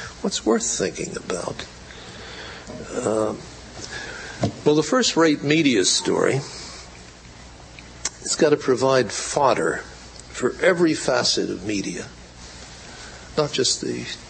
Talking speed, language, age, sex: 95 wpm, English, 60-79, male